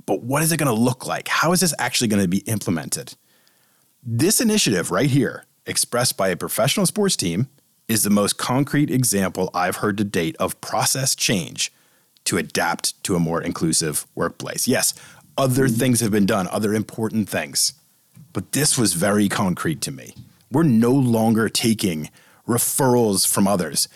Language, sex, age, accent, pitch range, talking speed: English, male, 40-59, American, 105-130 Hz, 170 wpm